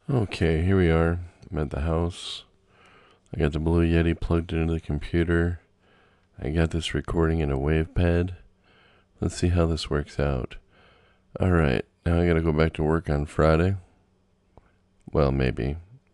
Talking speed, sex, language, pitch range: 160 wpm, male, English, 70-90 Hz